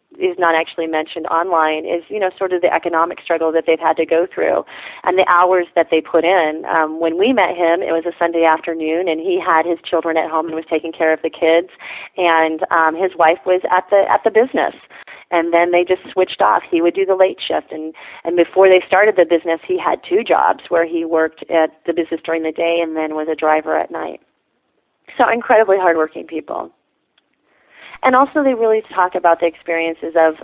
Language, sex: English, female